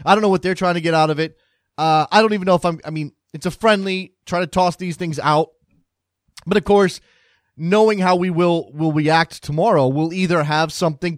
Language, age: English, 30-49